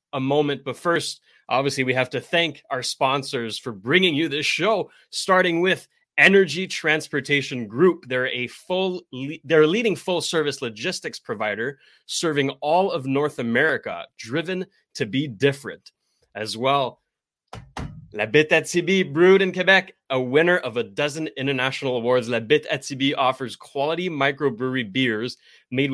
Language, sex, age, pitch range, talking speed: English, male, 20-39, 125-165 Hz, 140 wpm